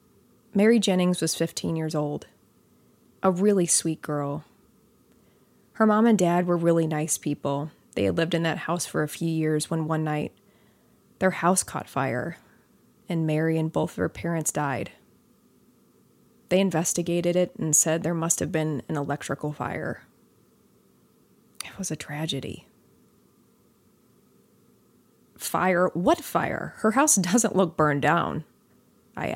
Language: English